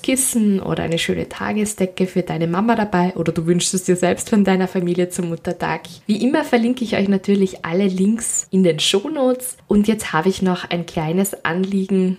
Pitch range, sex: 175-210 Hz, female